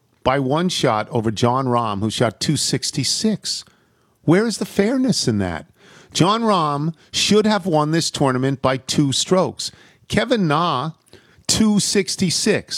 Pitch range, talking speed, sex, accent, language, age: 150-195 Hz, 130 wpm, male, American, English, 50-69